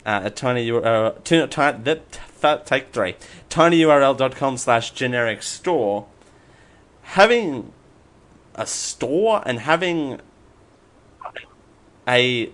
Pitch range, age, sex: 105-150 Hz, 30-49, male